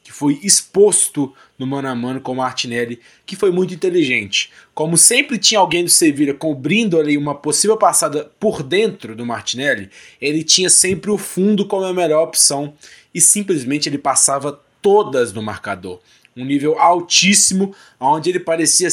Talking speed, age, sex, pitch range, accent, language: 160 wpm, 20-39, male, 140-190 Hz, Brazilian, Portuguese